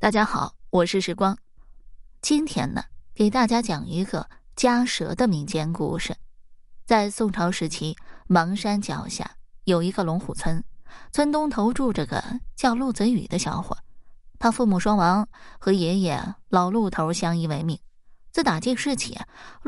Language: Chinese